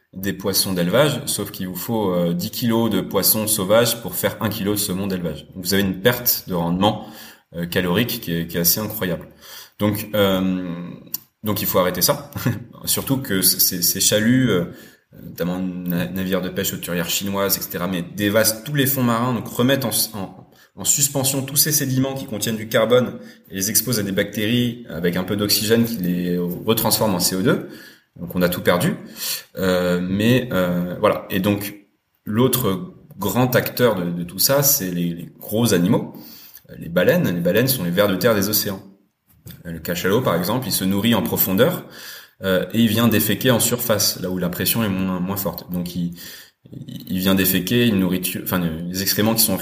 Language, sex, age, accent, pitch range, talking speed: French, male, 30-49, French, 90-110 Hz, 195 wpm